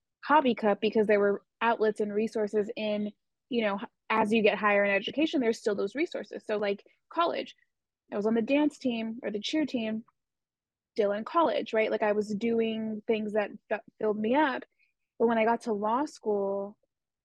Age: 20-39